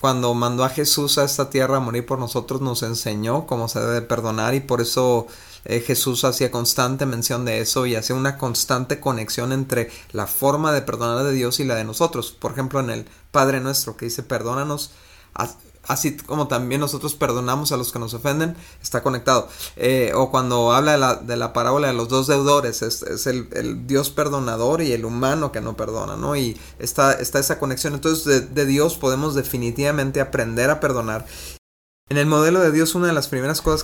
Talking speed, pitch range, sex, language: 205 wpm, 120-145 Hz, male, Spanish